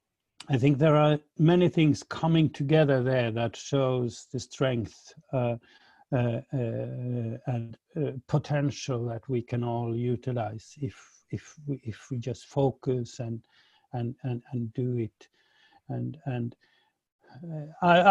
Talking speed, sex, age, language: 135 wpm, male, 60-79, English